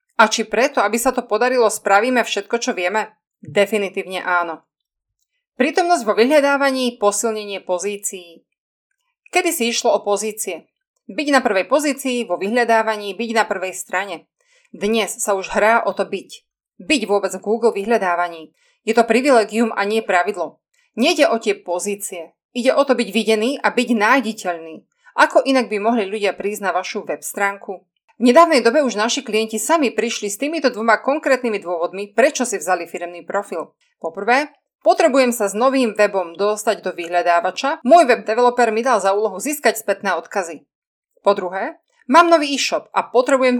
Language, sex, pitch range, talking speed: Slovak, female, 200-255 Hz, 160 wpm